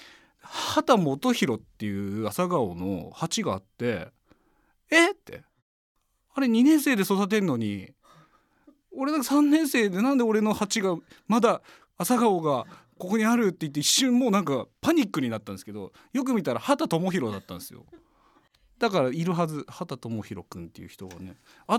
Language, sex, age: Japanese, male, 40-59